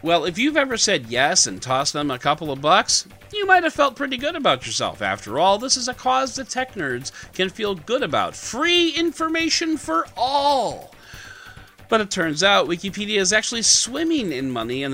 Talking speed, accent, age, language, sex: 195 wpm, American, 40-59, English, male